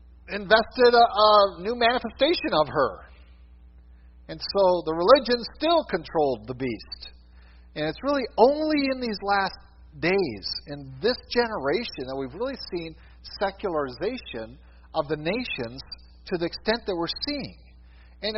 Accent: American